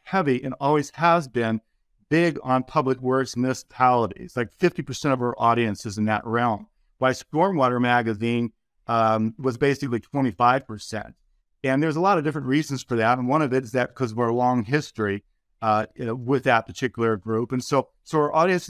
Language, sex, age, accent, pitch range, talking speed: English, male, 50-69, American, 120-145 Hz, 190 wpm